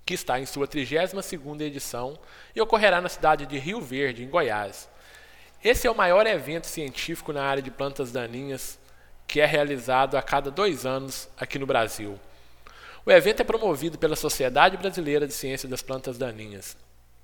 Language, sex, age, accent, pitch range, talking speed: Portuguese, male, 20-39, Brazilian, 130-165 Hz, 165 wpm